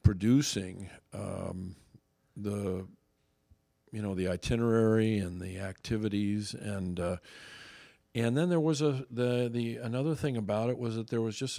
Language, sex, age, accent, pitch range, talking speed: English, male, 50-69, American, 95-115 Hz, 145 wpm